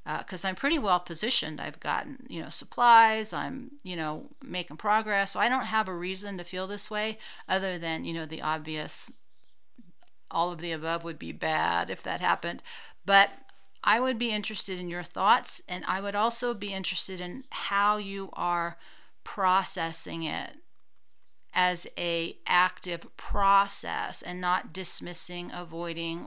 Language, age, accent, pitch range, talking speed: English, 40-59, American, 165-200 Hz, 160 wpm